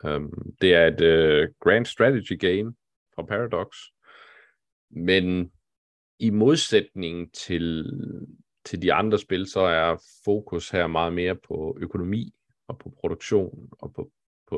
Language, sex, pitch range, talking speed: Danish, male, 80-100 Hz, 130 wpm